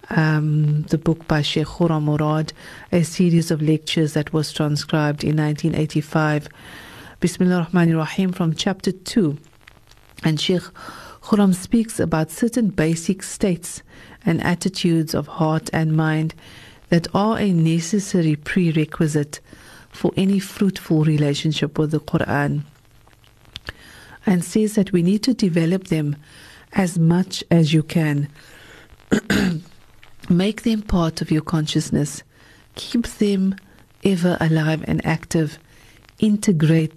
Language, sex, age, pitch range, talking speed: English, female, 50-69, 150-185 Hz, 120 wpm